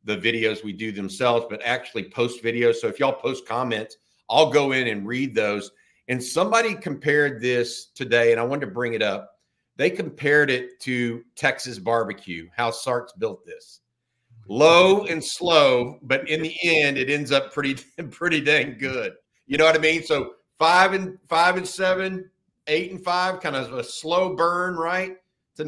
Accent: American